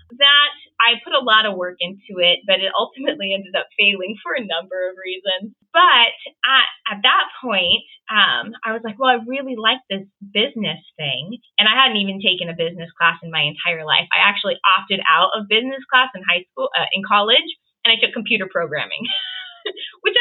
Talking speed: 200 wpm